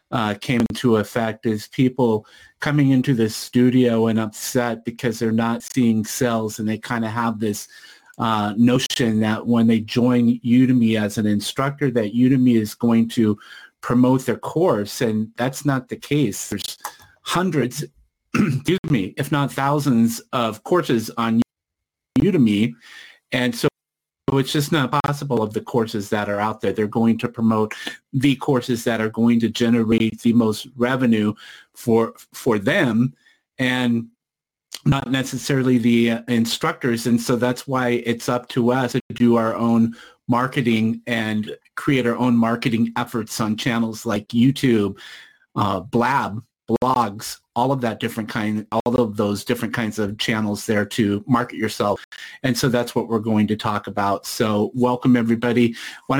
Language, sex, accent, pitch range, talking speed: English, male, American, 110-125 Hz, 155 wpm